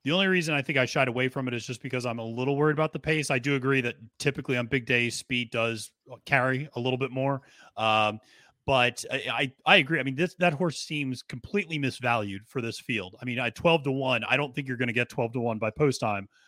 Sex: male